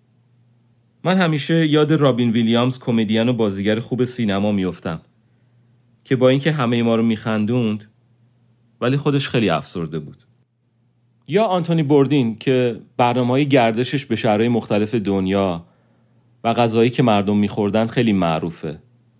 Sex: male